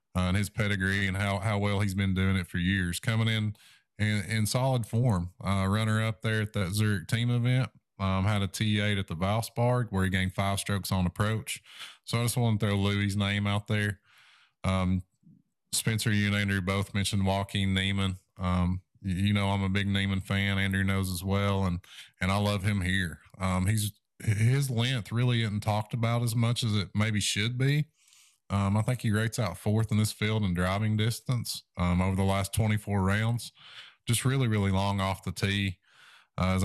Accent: American